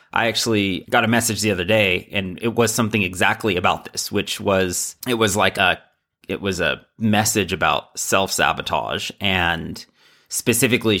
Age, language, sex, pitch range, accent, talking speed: 30-49, English, male, 105-125 Hz, American, 170 wpm